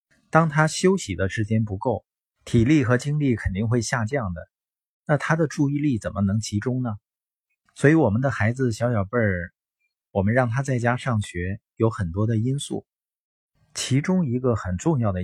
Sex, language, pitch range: male, Chinese, 105-140 Hz